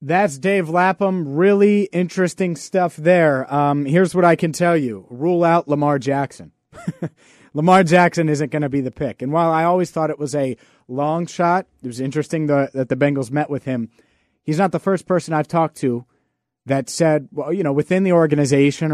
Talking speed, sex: 195 wpm, male